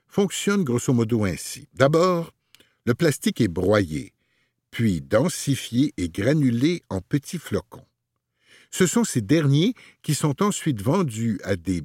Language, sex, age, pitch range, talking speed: French, male, 60-79, 105-160 Hz, 130 wpm